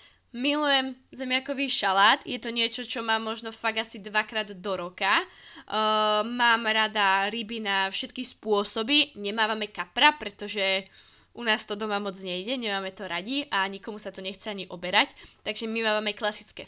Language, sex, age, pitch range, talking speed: Slovak, female, 20-39, 200-245 Hz, 160 wpm